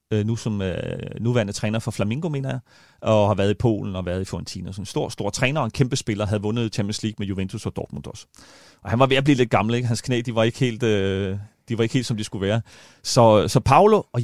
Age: 30-49